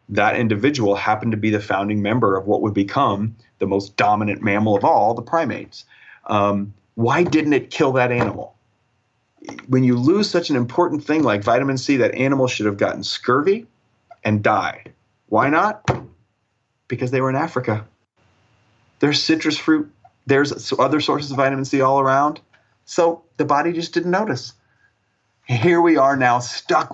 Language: English